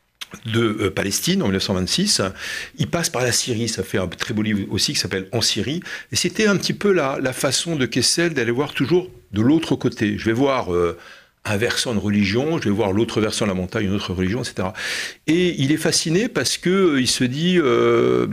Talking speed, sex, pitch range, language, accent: 215 wpm, male, 95-120 Hz, French, French